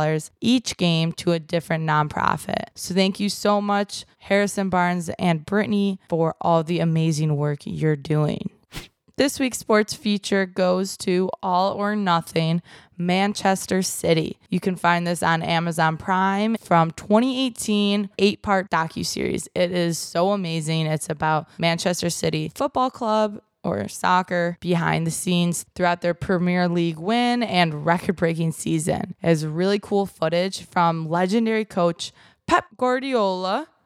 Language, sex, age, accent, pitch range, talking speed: English, female, 20-39, American, 165-200 Hz, 135 wpm